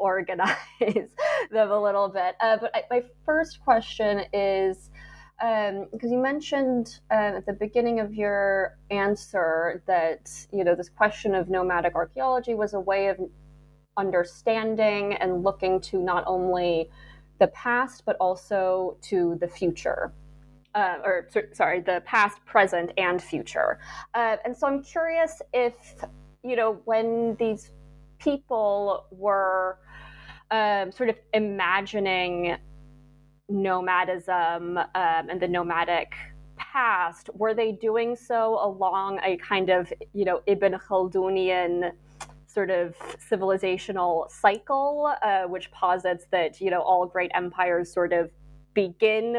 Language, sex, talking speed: English, female, 130 wpm